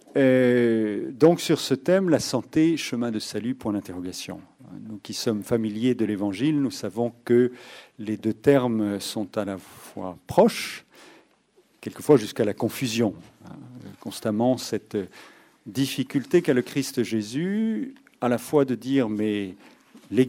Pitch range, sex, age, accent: 110-150 Hz, male, 50-69, French